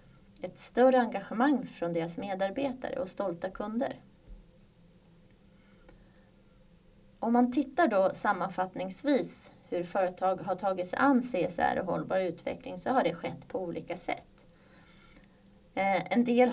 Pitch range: 180-245 Hz